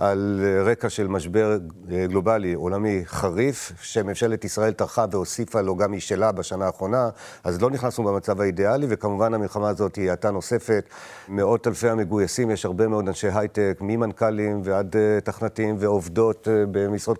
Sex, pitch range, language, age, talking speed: male, 100-115 Hz, Hebrew, 50-69, 140 wpm